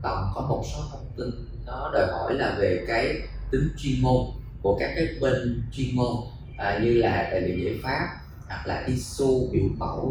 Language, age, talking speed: Vietnamese, 20-39, 190 wpm